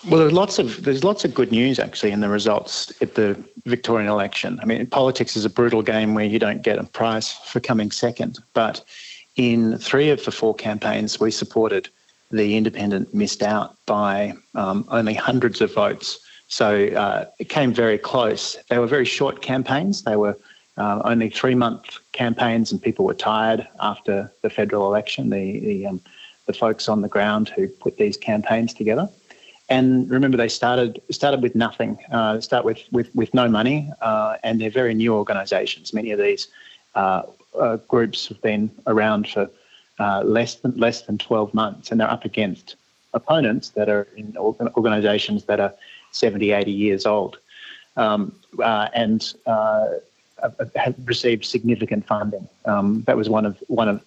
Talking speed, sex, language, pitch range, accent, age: 175 wpm, male, English, 105-125 Hz, Australian, 40-59